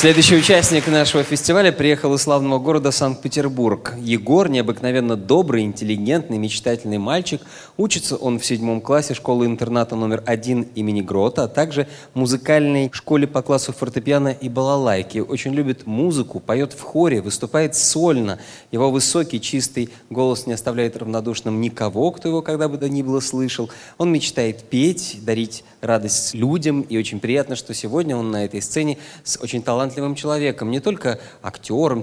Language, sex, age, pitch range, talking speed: Russian, male, 20-39, 115-145 Hz, 150 wpm